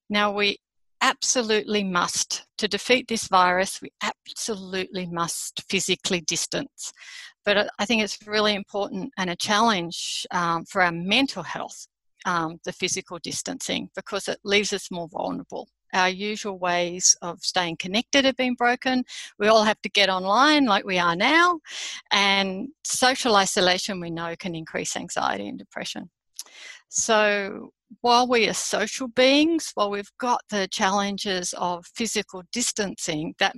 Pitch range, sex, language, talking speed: 180-220 Hz, female, English, 145 wpm